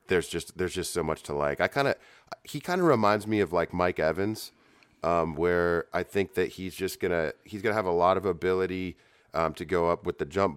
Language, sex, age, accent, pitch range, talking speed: English, male, 30-49, American, 80-90 Hz, 240 wpm